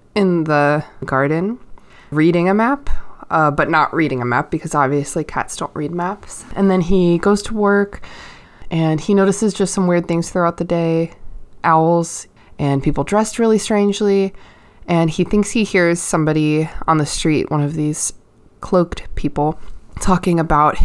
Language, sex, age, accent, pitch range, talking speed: English, female, 20-39, American, 145-185 Hz, 160 wpm